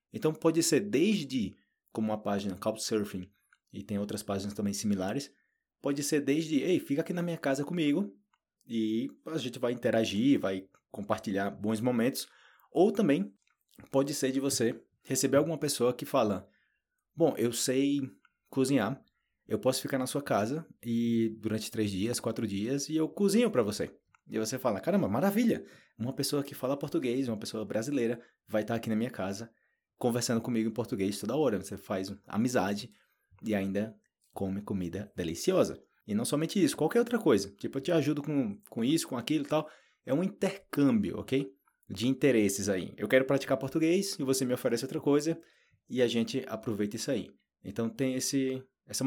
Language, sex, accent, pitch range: Portuguese, male, Brazilian, 105-145 Hz